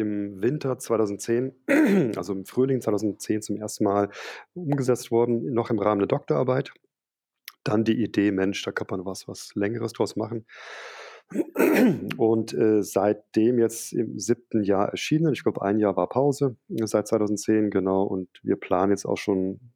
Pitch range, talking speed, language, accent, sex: 100-115 Hz, 160 wpm, German, German, male